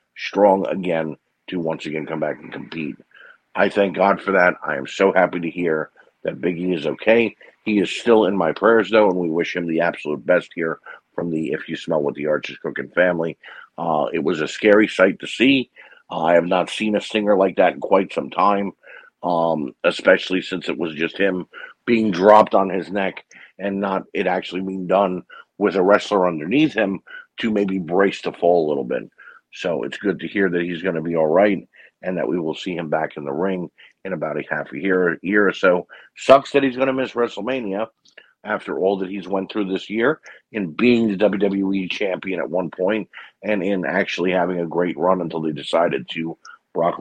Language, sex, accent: English, male, American